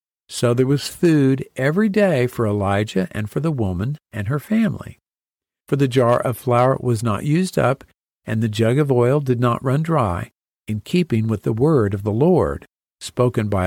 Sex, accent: male, American